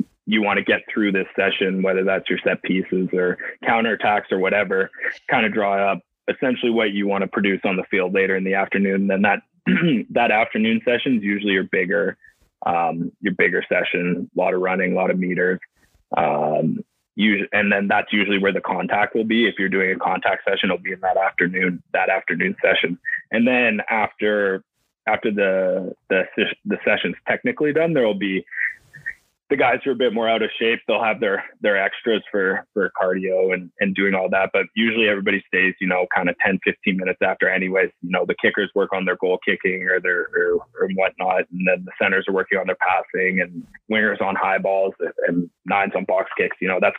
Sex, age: male, 20-39